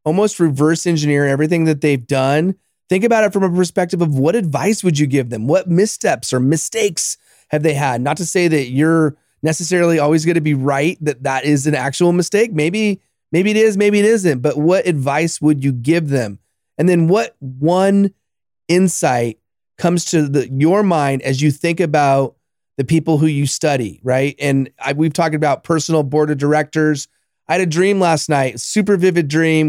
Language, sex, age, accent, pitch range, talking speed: English, male, 30-49, American, 145-180 Hz, 195 wpm